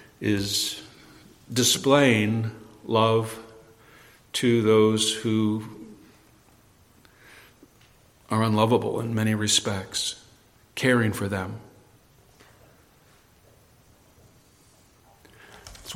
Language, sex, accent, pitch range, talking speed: English, male, American, 105-130 Hz, 55 wpm